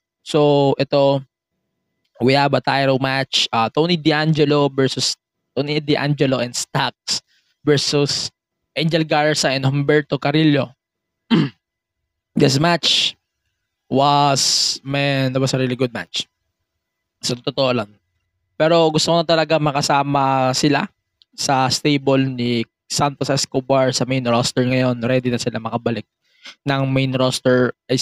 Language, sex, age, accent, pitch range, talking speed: English, male, 20-39, Filipino, 115-145 Hz, 125 wpm